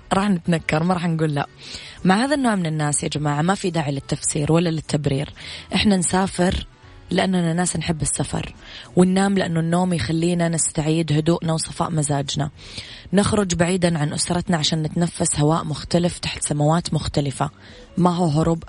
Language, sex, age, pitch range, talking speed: Arabic, female, 20-39, 150-180 Hz, 150 wpm